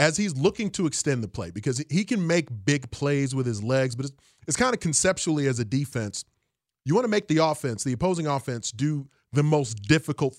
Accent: American